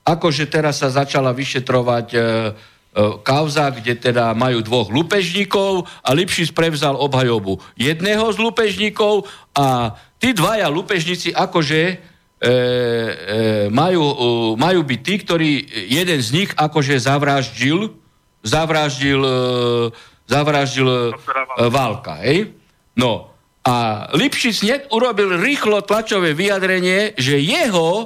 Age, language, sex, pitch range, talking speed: 50-69, Slovak, male, 130-185 Hz, 115 wpm